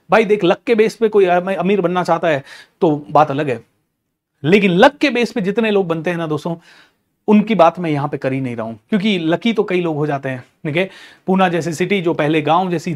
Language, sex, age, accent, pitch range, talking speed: Hindi, male, 30-49, native, 155-235 Hz, 250 wpm